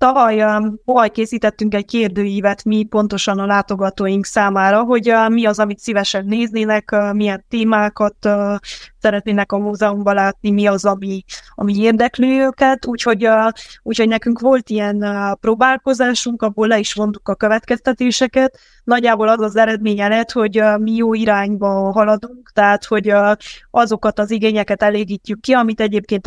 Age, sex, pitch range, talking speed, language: 20-39, female, 205-230 Hz, 130 wpm, Hungarian